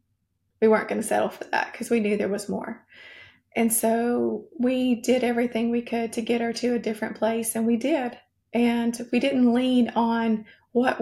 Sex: female